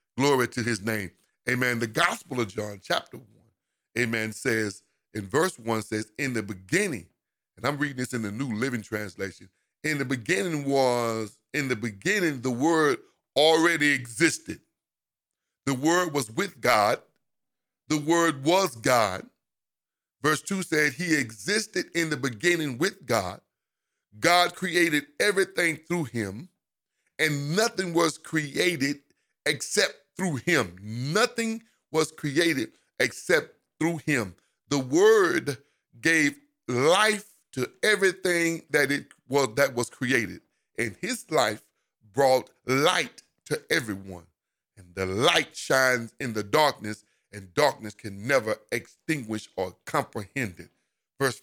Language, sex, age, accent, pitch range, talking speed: English, male, 50-69, American, 110-165 Hz, 130 wpm